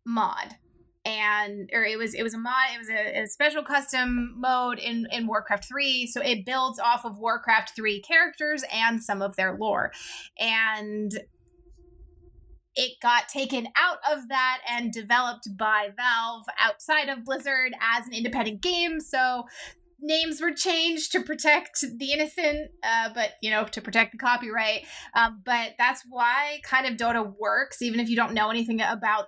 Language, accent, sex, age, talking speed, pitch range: English, American, female, 20-39, 170 wpm, 220-270 Hz